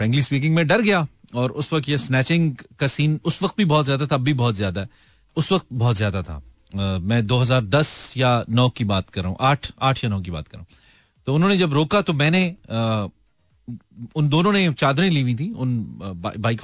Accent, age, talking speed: native, 40-59, 165 wpm